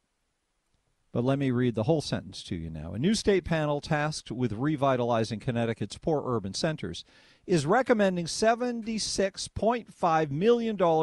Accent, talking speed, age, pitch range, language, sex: American, 135 wpm, 50-69, 135-210 Hz, English, male